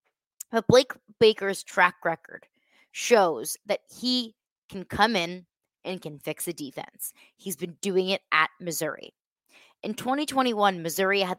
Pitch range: 165-200 Hz